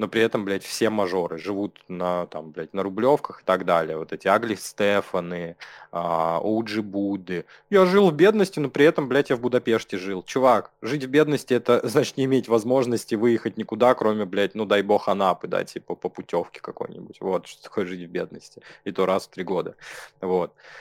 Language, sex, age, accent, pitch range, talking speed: Russian, male, 20-39, native, 100-120 Hz, 195 wpm